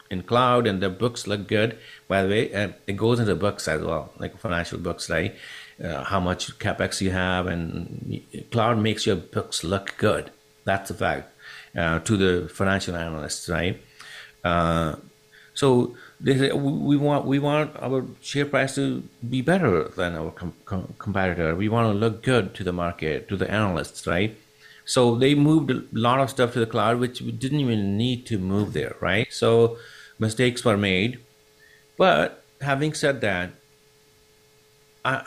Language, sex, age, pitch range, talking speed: English, male, 60-79, 95-135 Hz, 170 wpm